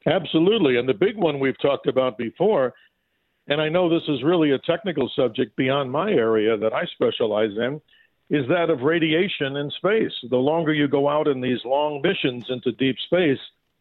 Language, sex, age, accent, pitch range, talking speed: English, male, 50-69, American, 130-165 Hz, 185 wpm